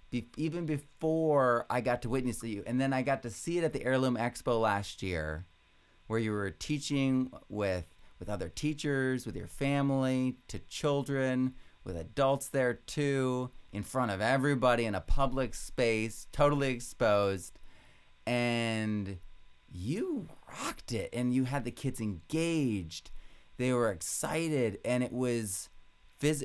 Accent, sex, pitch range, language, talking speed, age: American, male, 105-135 Hz, English, 150 wpm, 30-49